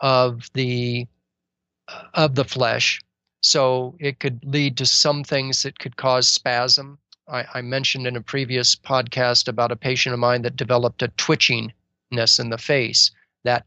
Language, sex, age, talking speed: English, male, 40-59, 160 wpm